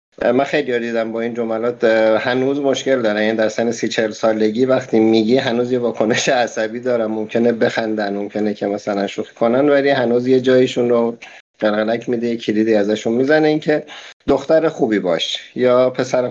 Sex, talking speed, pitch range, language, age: male, 165 wpm, 110-130 Hz, Persian, 50-69